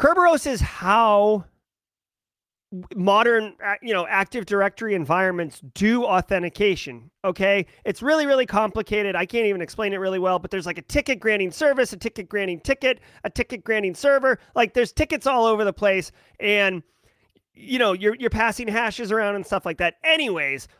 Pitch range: 185-245 Hz